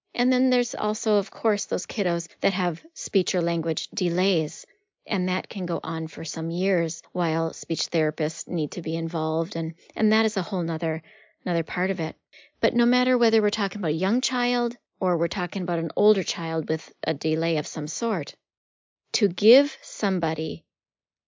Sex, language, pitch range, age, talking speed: female, English, 170-220 Hz, 40-59, 185 wpm